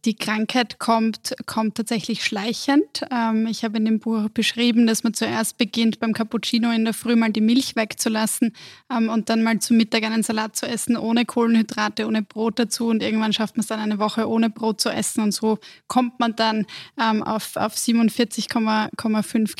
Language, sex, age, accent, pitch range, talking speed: German, female, 20-39, German, 210-230 Hz, 180 wpm